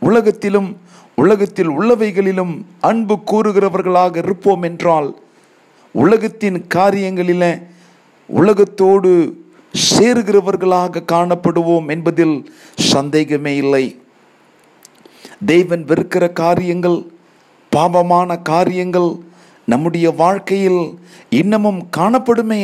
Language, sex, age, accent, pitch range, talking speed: Tamil, male, 50-69, native, 170-200 Hz, 65 wpm